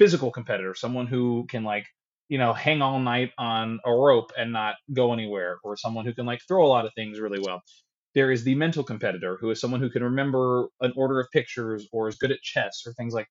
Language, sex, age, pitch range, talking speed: English, male, 20-39, 115-145 Hz, 240 wpm